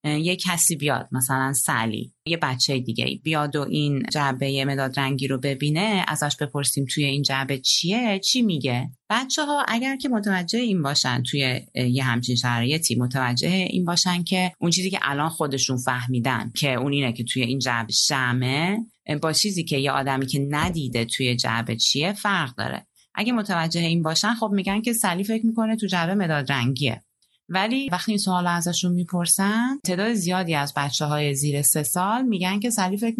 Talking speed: 180 wpm